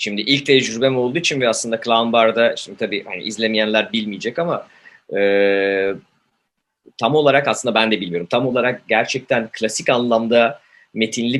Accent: native